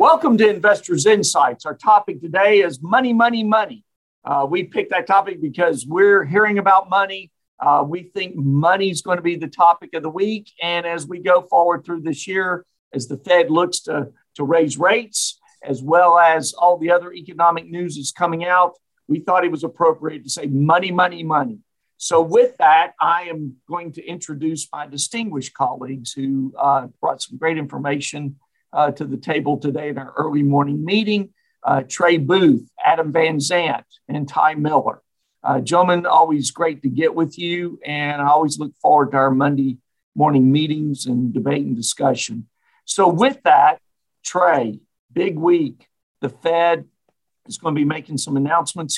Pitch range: 145-180 Hz